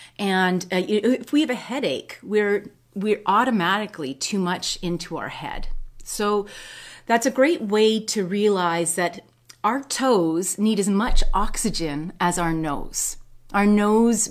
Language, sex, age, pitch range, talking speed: English, female, 30-49, 170-230 Hz, 145 wpm